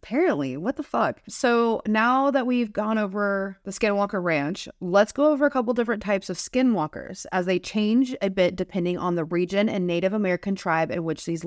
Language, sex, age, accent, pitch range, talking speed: English, female, 30-49, American, 175-220 Hz, 200 wpm